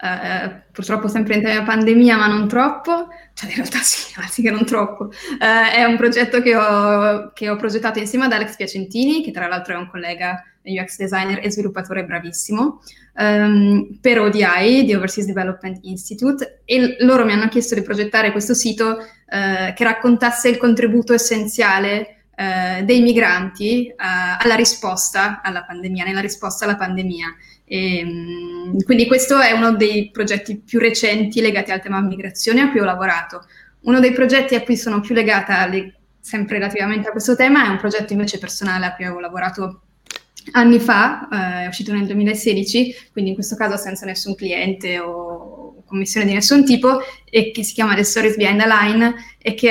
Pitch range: 190-230 Hz